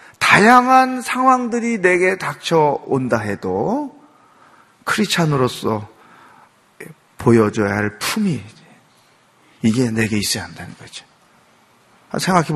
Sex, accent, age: male, native, 40-59